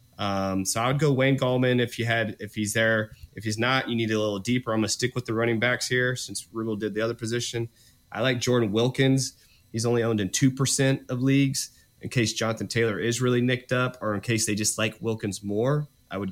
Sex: male